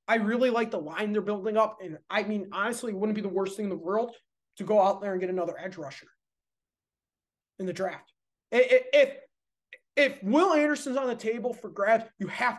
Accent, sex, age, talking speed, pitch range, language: American, male, 20-39, 210 wpm, 195-255 Hz, English